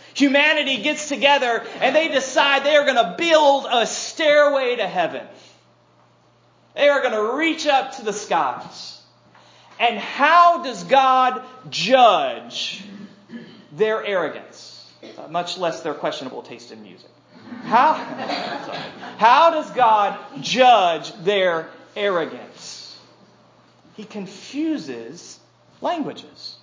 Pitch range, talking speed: 175-275 Hz, 110 wpm